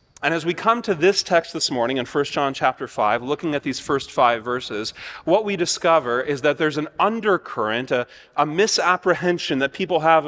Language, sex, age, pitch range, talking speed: English, male, 30-49, 135-175 Hz, 200 wpm